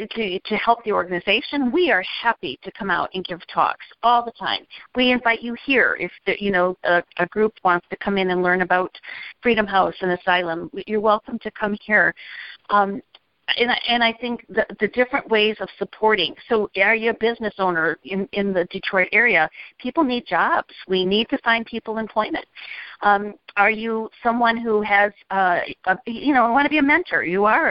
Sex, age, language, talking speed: female, 50-69, English, 200 wpm